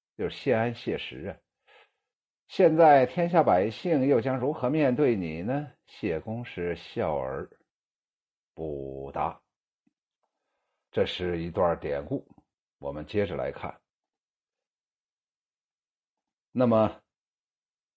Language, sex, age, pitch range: Chinese, male, 60-79, 80-125 Hz